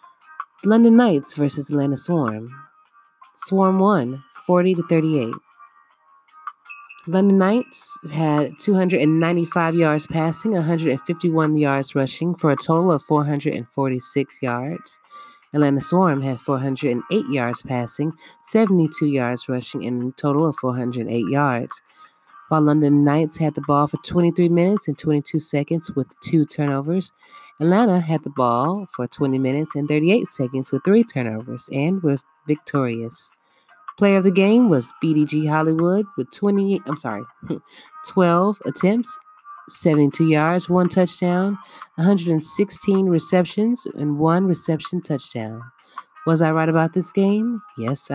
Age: 30-49